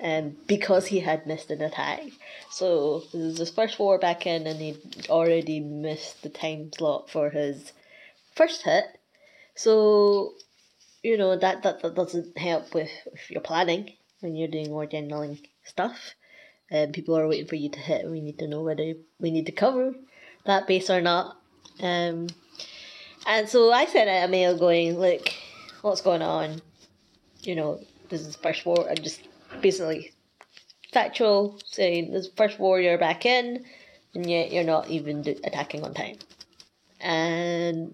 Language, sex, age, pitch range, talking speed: English, female, 20-39, 165-205 Hz, 170 wpm